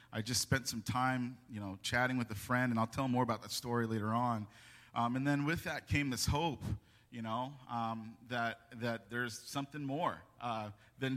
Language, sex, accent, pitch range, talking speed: English, male, American, 110-135 Hz, 205 wpm